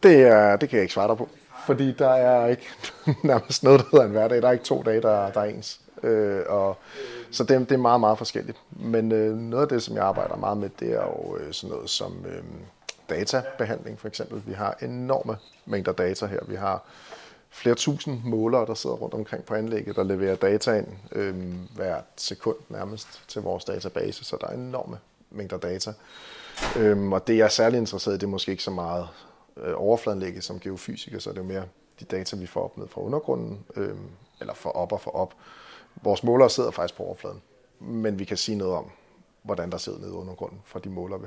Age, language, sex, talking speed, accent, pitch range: 30-49, Danish, male, 205 wpm, native, 95-120 Hz